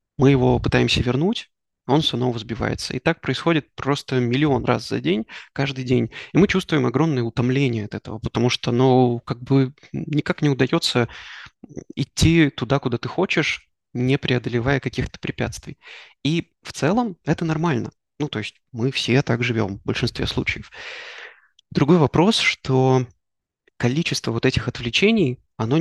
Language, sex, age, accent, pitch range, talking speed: Russian, male, 20-39, native, 115-150 Hz, 145 wpm